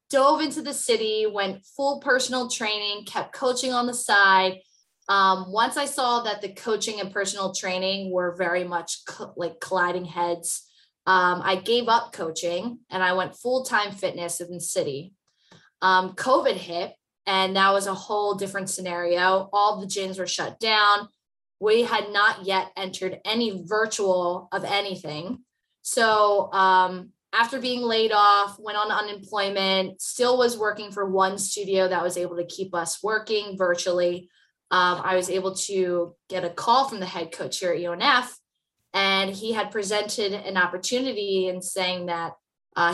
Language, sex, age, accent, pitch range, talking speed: English, female, 20-39, American, 185-220 Hz, 165 wpm